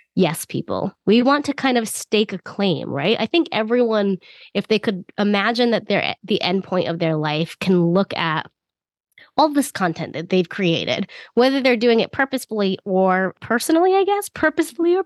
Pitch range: 175-240 Hz